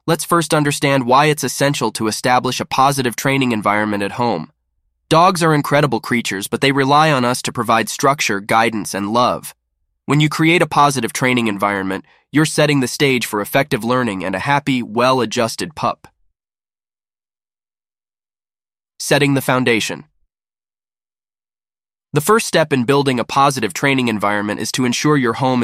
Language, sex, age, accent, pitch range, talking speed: English, male, 20-39, American, 105-145 Hz, 150 wpm